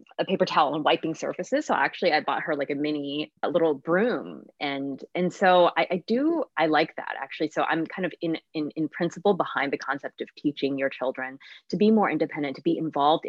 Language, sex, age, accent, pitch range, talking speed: English, female, 20-39, American, 140-180 Hz, 220 wpm